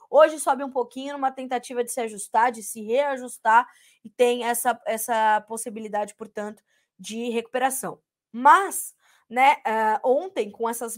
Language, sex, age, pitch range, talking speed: Portuguese, female, 20-39, 225-270 Hz, 140 wpm